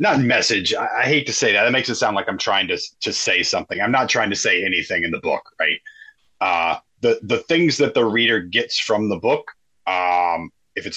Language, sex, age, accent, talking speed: English, male, 30-49, American, 230 wpm